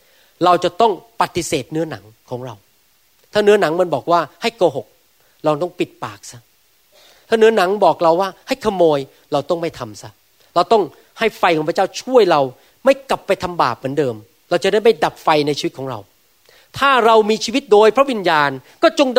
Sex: male